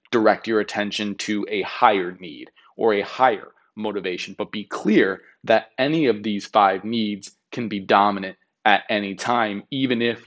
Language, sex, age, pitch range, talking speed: English, male, 20-39, 100-115 Hz, 165 wpm